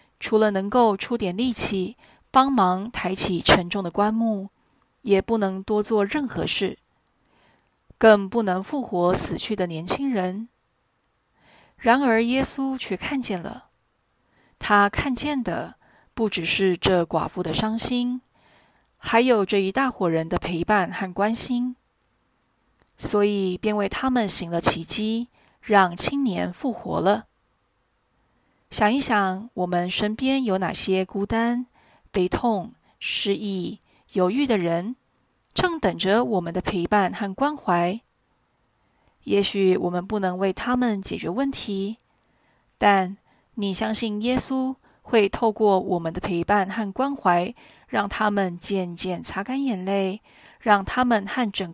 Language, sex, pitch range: Chinese, female, 185-235 Hz